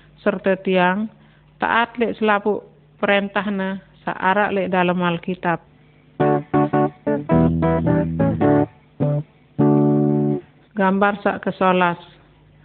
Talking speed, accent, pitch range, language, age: 60 wpm, native, 180-210 Hz, Indonesian, 50-69